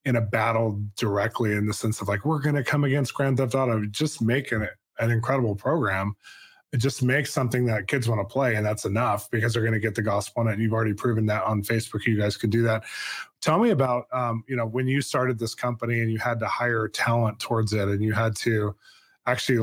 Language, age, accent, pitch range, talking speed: English, 20-39, American, 110-130 Hz, 245 wpm